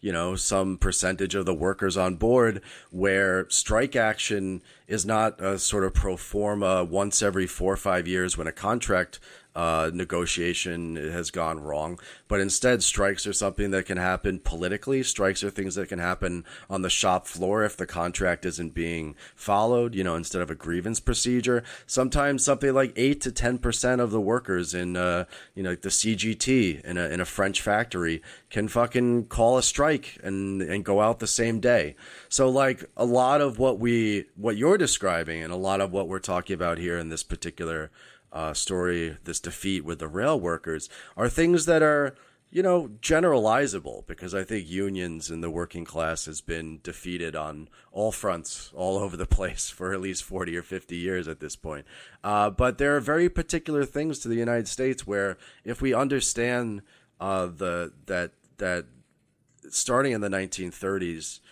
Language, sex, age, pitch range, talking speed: English, male, 30-49, 85-115 Hz, 185 wpm